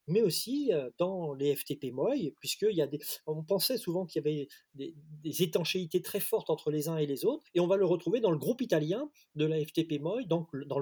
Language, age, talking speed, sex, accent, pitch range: French, 30-49, 215 wpm, male, French, 140-180 Hz